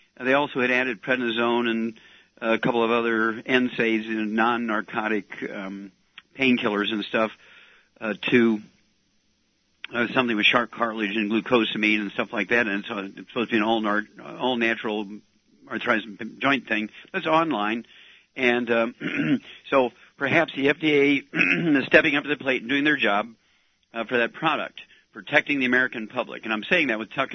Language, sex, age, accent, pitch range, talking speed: English, male, 50-69, American, 110-135 Hz, 155 wpm